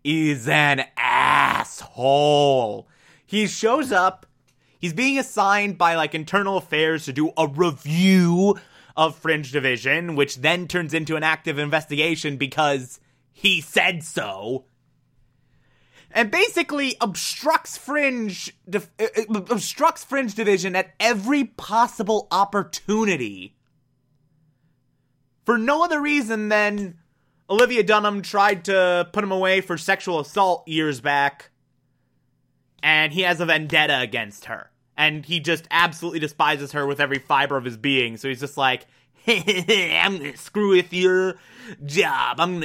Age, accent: 20-39, American